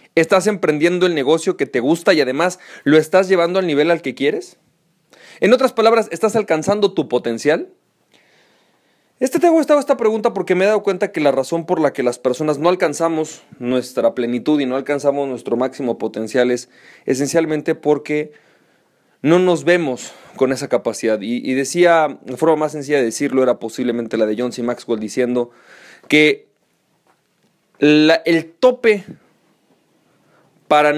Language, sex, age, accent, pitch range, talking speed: Spanish, male, 30-49, Mexican, 135-195 Hz, 160 wpm